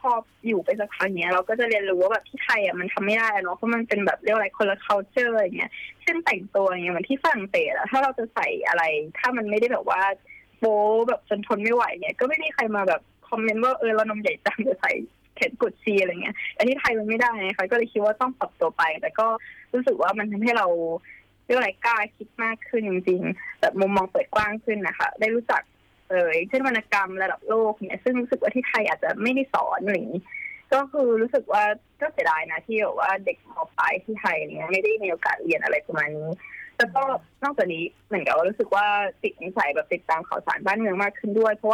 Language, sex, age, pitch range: Thai, female, 20-39, 195-250 Hz